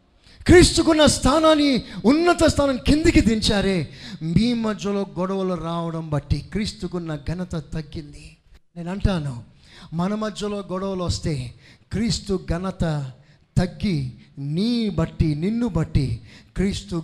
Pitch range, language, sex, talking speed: 145-185 Hz, Telugu, male, 100 wpm